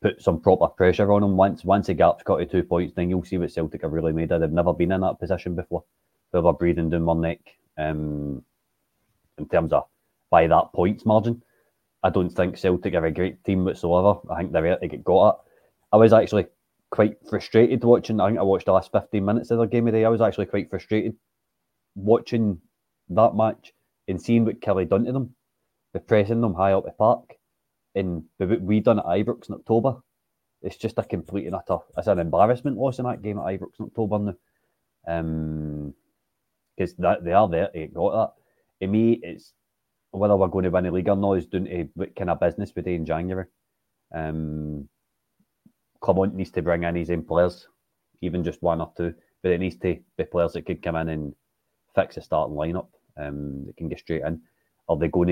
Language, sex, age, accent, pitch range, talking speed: English, male, 30-49, British, 85-105 Hz, 215 wpm